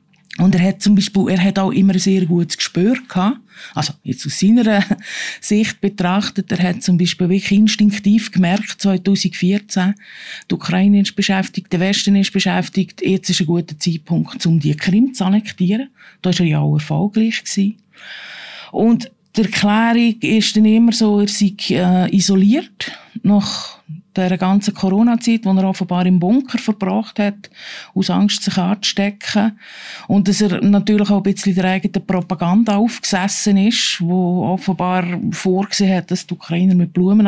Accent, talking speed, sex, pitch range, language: Austrian, 160 wpm, female, 180-210 Hz, German